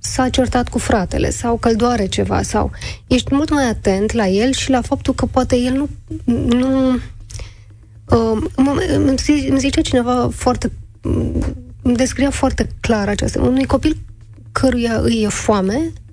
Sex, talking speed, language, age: female, 155 wpm, Romanian, 20-39